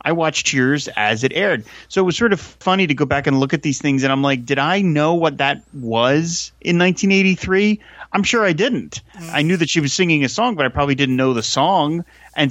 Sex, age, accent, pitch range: male, 30-49, American, 135-170 Hz